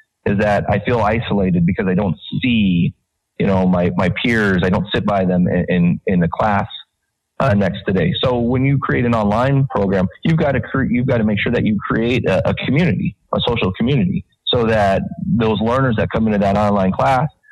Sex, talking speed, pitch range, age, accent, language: male, 215 wpm, 95-125 Hz, 30-49, American, English